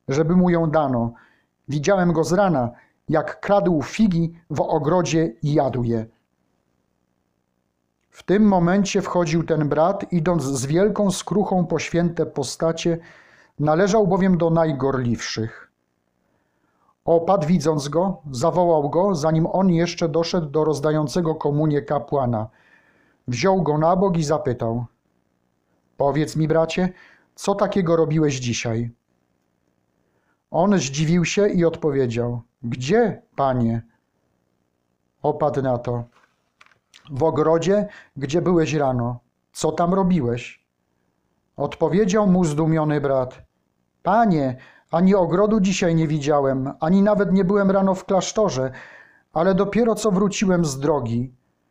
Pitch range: 130-185 Hz